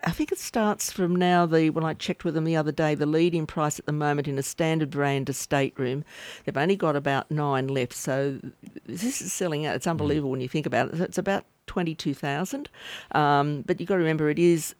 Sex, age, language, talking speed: female, 50-69, English, 230 wpm